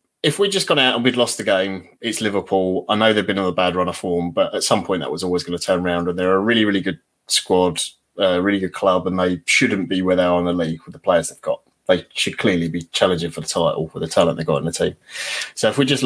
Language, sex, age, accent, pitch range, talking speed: English, male, 20-39, British, 90-125 Hz, 300 wpm